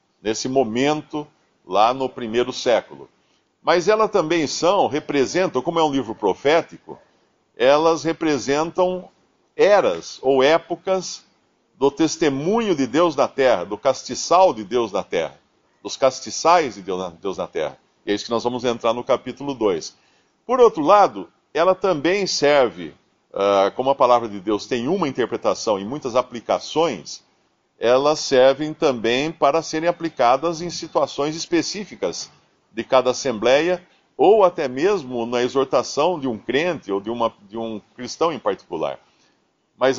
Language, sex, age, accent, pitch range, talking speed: Portuguese, male, 50-69, Brazilian, 115-165 Hz, 145 wpm